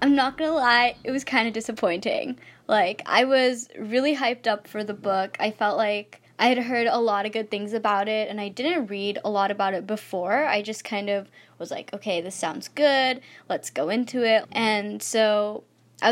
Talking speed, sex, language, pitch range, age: 210 wpm, female, English, 195-235 Hz, 10-29